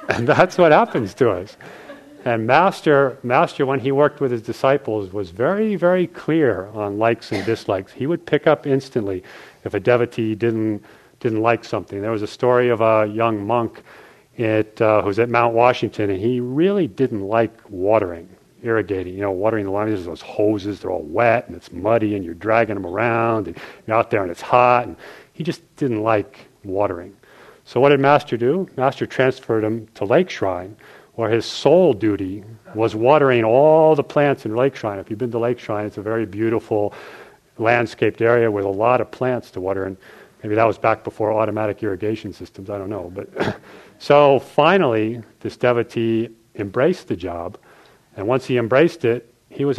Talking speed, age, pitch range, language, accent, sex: 190 wpm, 40-59, 105-130 Hz, English, American, male